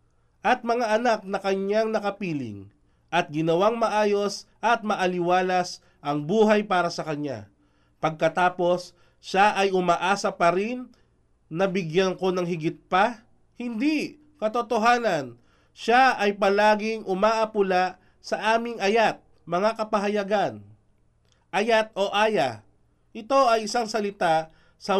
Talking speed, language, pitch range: 115 wpm, Filipino, 170-215 Hz